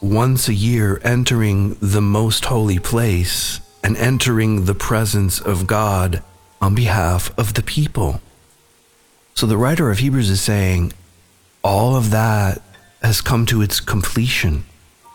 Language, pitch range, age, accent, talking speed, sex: English, 100-125 Hz, 40-59, American, 135 wpm, male